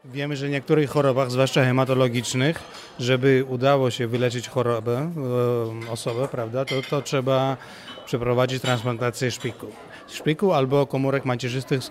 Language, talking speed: Polish, 125 wpm